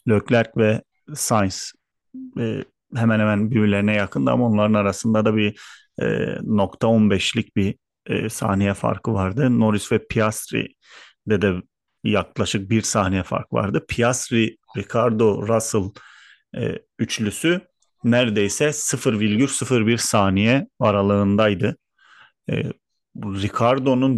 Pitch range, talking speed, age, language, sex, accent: 105-130 Hz, 100 wpm, 40-59, Turkish, male, native